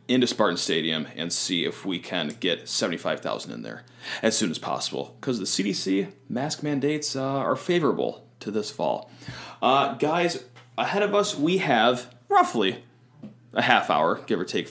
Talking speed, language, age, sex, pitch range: 165 wpm, English, 30-49, male, 105-135 Hz